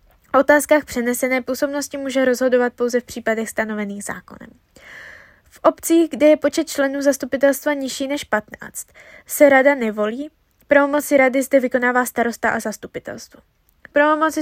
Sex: female